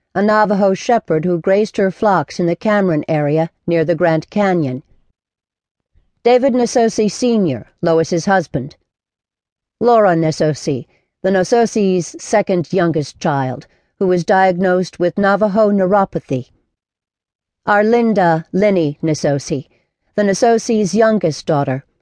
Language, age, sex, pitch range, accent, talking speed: English, 50-69, female, 160-205 Hz, American, 110 wpm